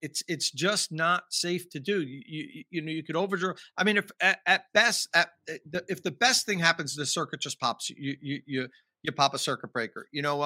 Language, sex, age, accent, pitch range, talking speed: English, male, 50-69, American, 140-180 Hz, 235 wpm